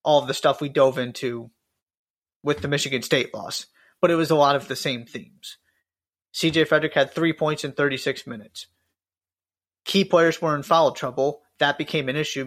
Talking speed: 190 wpm